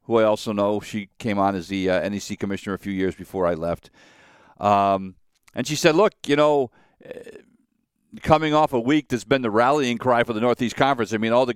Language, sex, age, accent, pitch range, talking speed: English, male, 50-69, American, 110-140 Hz, 215 wpm